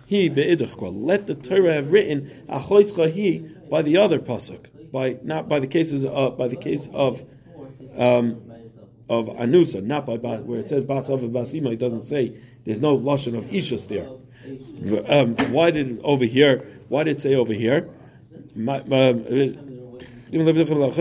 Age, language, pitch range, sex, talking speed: 40-59, English, 120-150 Hz, male, 135 wpm